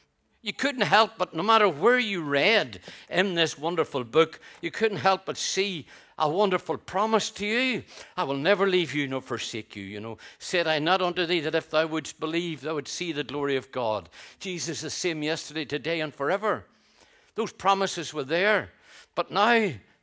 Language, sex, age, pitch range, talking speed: English, male, 60-79, 130-170 Hz, 190 wpm